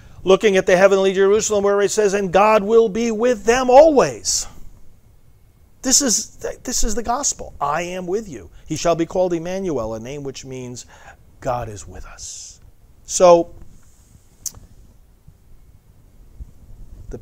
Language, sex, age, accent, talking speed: English, male, 50-69, American, 140 wpm